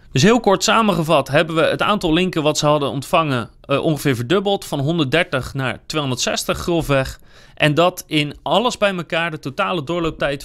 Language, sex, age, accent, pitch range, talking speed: Dutch, male, 30-49, Dutch, 135-185 Hz, 170 wpm